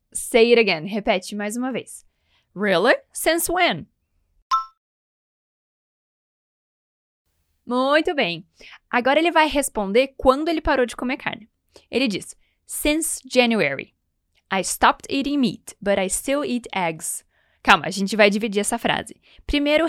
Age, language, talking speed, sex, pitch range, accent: 10-29, Portuguese, 130 wpm, female, 220-285 Hz, Brazilian